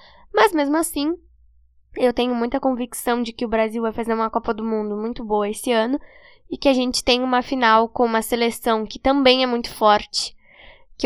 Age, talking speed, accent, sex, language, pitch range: 10-29, 200 wpm, Brazilian, female, Portuguese, 225-275 Hz